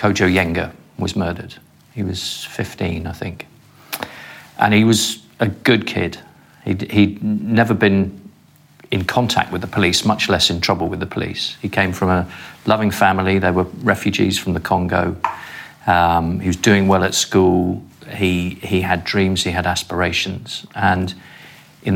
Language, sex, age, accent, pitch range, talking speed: English, male, 40-59, British, 90-110 Hz, 160 wpm